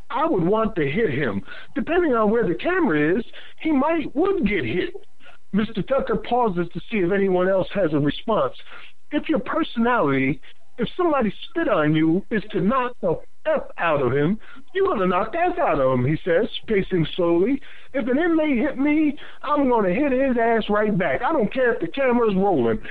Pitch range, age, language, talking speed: 185-270 Hz, 50-69, English, 200 wpm